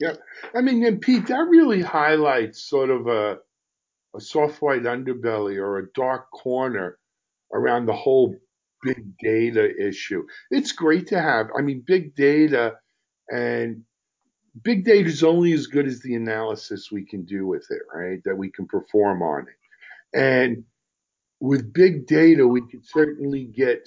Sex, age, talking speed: male, 50-69, 160 wpm